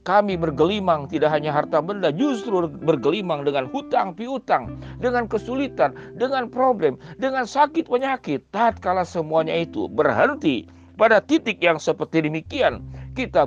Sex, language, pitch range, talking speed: male, Indonesian, 155-205 Hz, 125 wpm